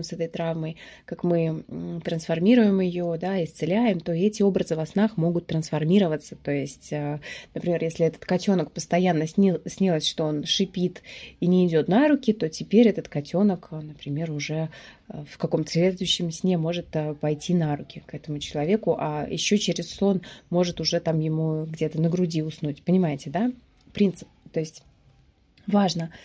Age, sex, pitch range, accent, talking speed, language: 20-39, female, 160-200 Hz, native, 155 wpm, Russian